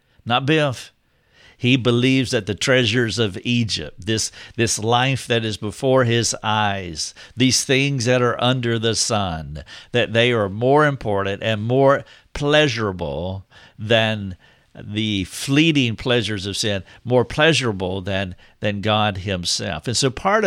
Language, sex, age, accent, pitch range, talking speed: English, male, 50-69, American, 100-125 Hz, 140 wpm